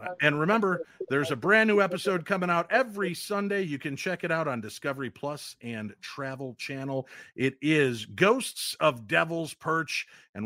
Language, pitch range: English, 115-150 Hz